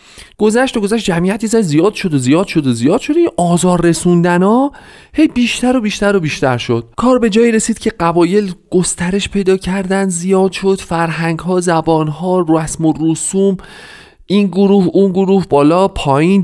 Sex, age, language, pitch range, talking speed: male, 40-59, Persian, 125-190 Hz, 165 wpm